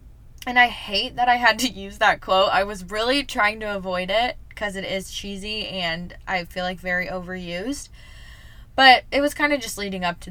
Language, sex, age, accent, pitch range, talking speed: English, female, 10-29, American, 185-230 Hz, 210 wpm